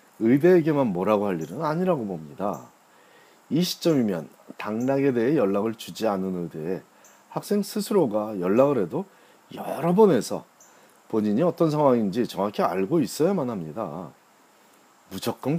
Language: Korean